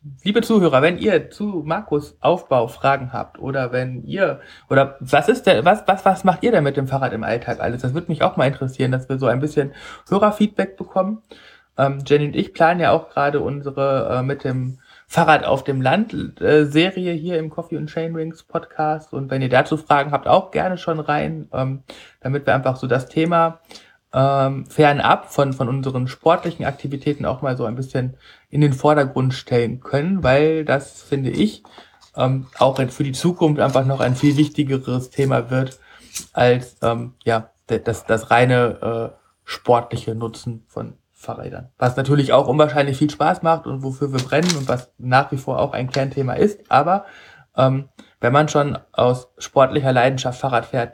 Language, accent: German, German